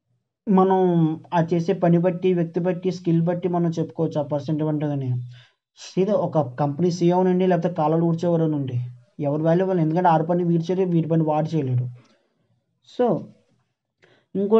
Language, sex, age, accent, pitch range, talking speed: English, male, 20-39, Indian, 155-190 Hz, 45 wpm